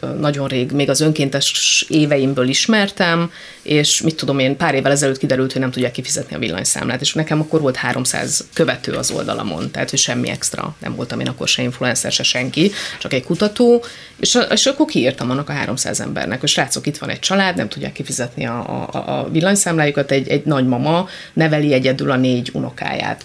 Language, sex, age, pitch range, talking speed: Hungarian, female, 30-49, 135-195 Hz, 190 wpm